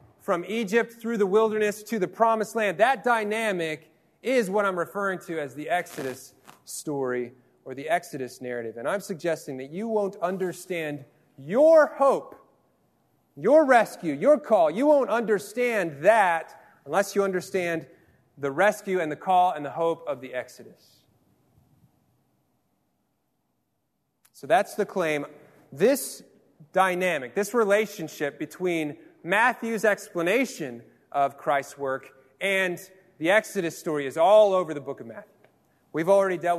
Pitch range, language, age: 155-205 Hz, English, 30-49